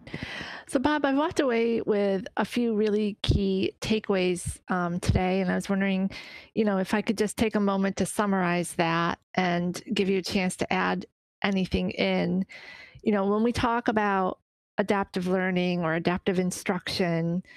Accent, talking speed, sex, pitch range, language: American, 165 wpm, female, 175-205 Hz, English